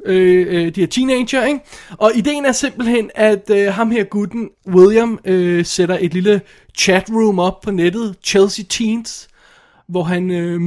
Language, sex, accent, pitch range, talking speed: Danish, male, native, 160-195 Hz, 155 wpm